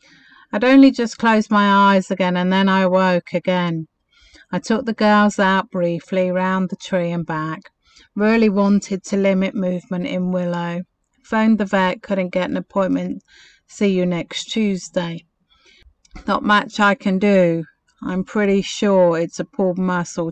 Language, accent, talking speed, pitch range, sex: English, British, 155 wpm, 175-205 Hz, female